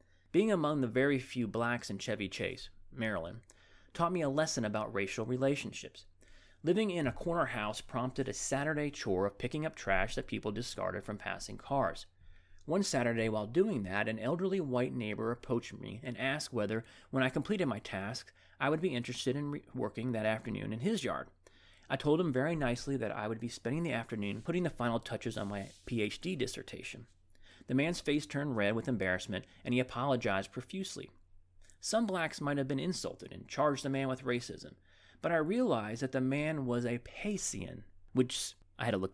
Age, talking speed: 30-49, 190 wpm